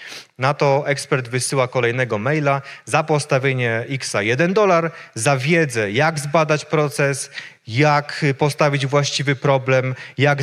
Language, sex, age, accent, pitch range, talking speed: Polish, male, 30-49, native, 125-150 Hz, 120 wpm